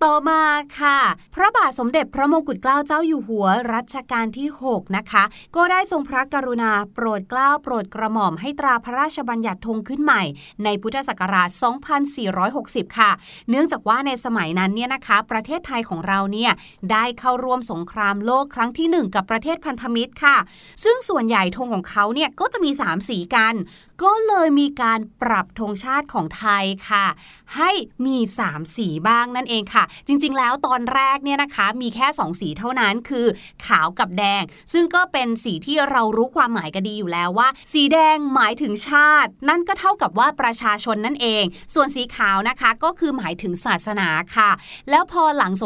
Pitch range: 205-285 Hz